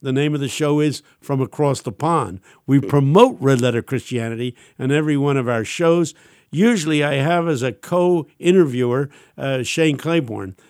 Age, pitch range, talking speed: 60-79, 135-170 Hz, 165 wpm